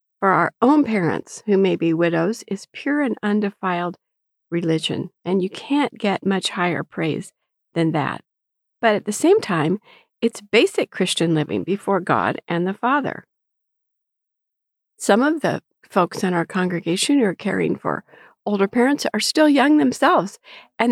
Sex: female